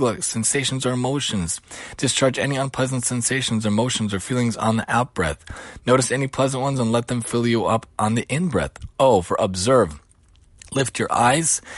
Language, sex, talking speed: English, male, 175 wpm